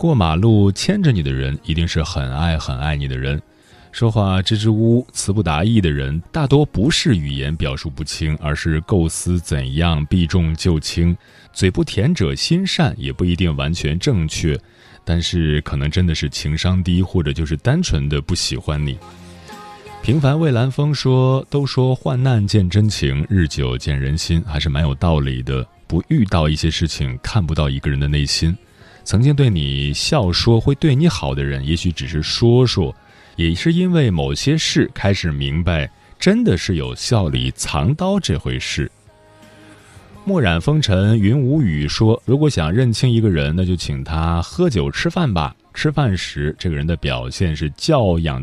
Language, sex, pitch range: Chinese, male, 75-110 Hz